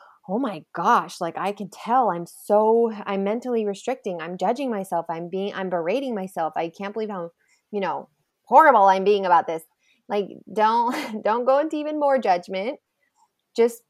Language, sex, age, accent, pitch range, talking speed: English, female, 20-39, American, 185-250 Hz, 175 wpm